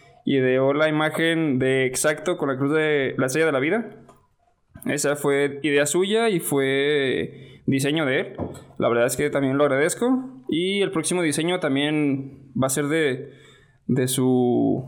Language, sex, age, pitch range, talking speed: Spanish, male, 20-39, 135-170 Hz, 165 wpm